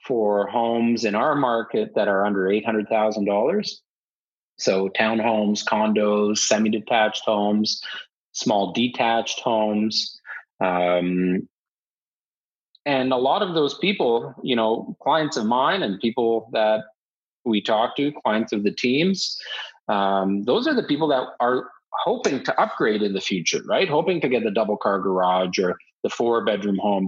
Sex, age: male, 30-49